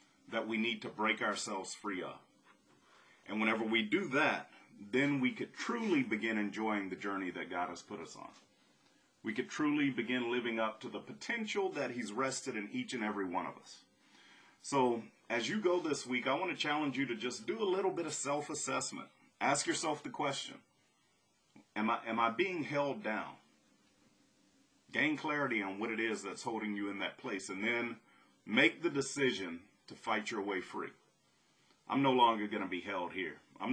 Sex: male